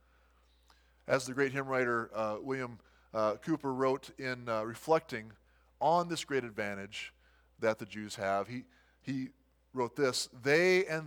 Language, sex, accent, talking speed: English, male, American, 145 wpm